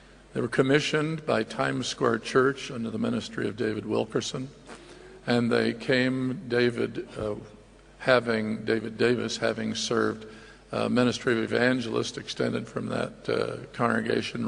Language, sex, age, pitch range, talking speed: English, male, 50-69, 110-125 Hz, 135 wpm